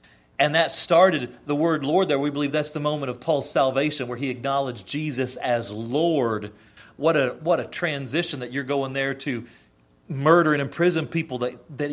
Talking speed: 185 wpm